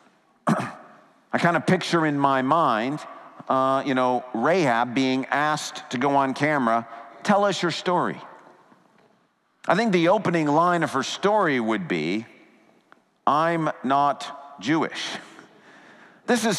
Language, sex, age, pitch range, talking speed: English, male, 50-69, 170-225 Hz, 130 wpm